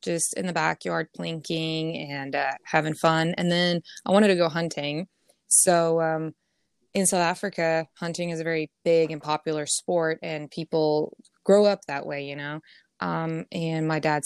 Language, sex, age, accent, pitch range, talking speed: English, female, 20-39, American, 160-180 Hz, 175 wpm